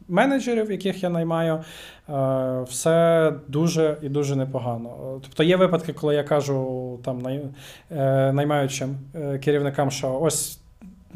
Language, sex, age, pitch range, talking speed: Ukrainian, male, 20-39, 135-165 Hz, 110 wpm